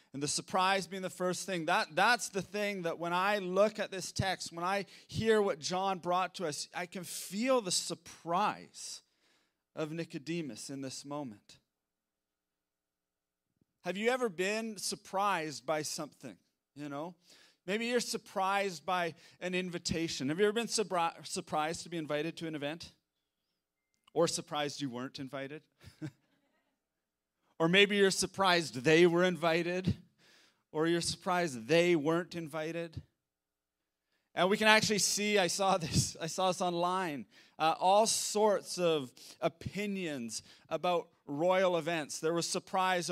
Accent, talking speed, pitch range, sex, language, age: American, 140 wpm, 150-190 Hz, male, English, 30-49